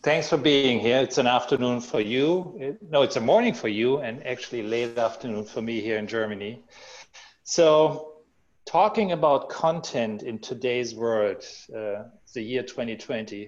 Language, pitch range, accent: English, 105-135 Hz, German